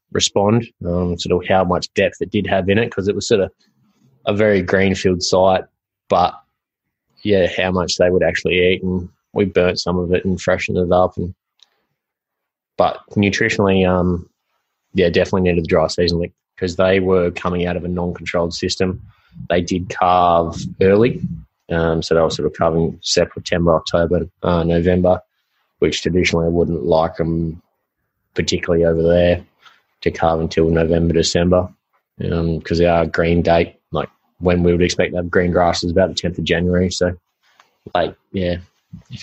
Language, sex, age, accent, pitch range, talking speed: English, male, 20-39, Australian, 85-95 Hz, 170 wpm